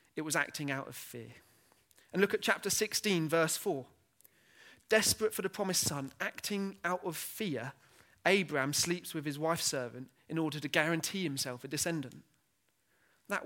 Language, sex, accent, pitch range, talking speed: English, male, British, 135-180 Hz, 160 wpm